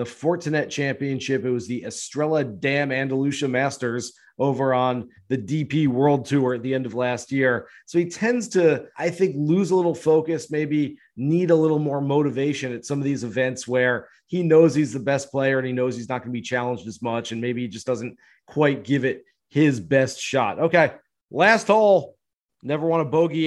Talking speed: 200 wpm